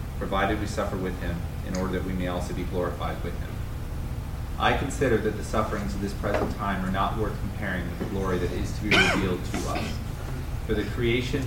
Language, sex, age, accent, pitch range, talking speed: English, male, 30-49, American, 90-110 Hz, 215 wpm